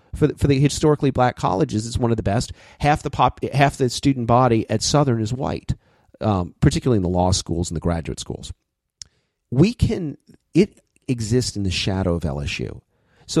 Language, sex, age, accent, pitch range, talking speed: English, male, 40-59, American, 100-125 Hz, 195 wpm